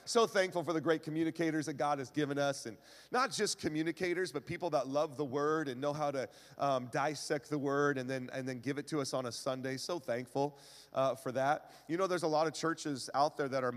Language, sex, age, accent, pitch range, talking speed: English, male, 40-59, American, 130-165 Hz, 240 wpm